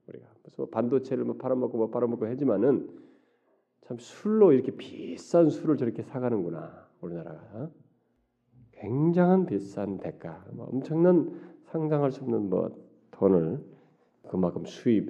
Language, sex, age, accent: Korean, male, 40-59, native